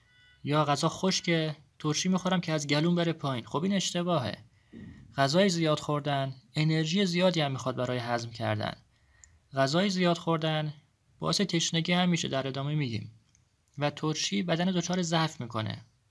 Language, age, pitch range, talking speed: Persian, 30-49, 130-175 Hz, 145 wpm